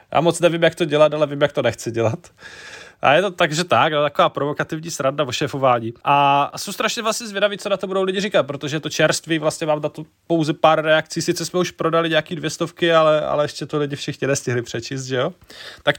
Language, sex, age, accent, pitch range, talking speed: Czech, male, 20-39, native, 145-170 Hz, 235 wpm